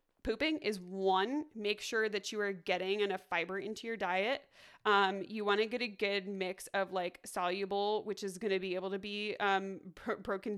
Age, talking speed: 20-39, 200 wpm